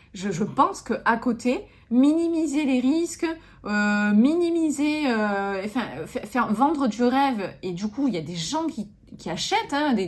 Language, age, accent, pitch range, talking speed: French, 30-49, French, 185-250 Hz, 180 wpm